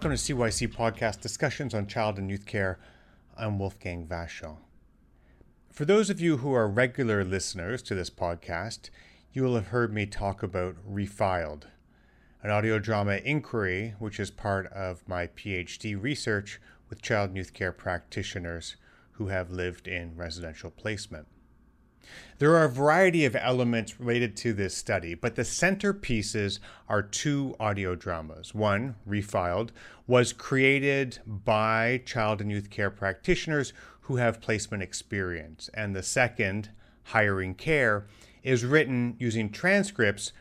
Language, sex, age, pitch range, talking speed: English, male, 30-49, 95-120 Hz, 140 wpm